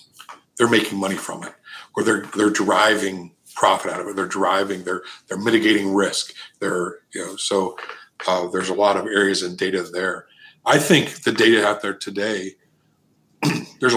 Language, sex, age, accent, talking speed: English, male, 50-69, American, 170 wpm